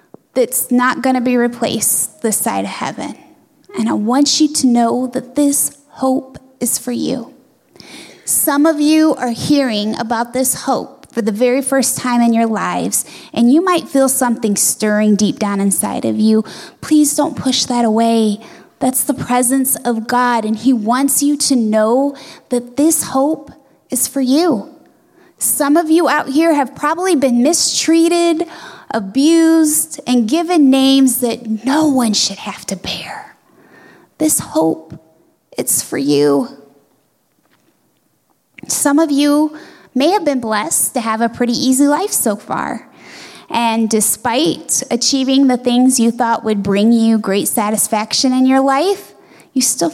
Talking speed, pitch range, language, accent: 155 wpm, 230-285 Hz, English, American